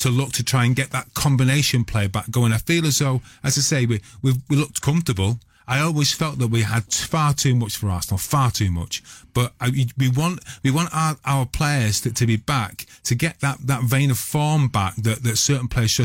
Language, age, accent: English, 30-49, British